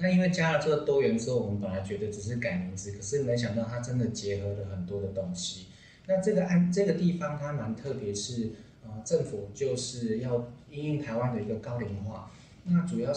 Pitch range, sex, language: 110-145 Hz, male, Chinese